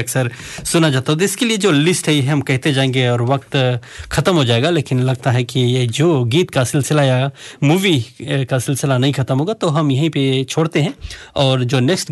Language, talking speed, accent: Hindi, 195 wpm, native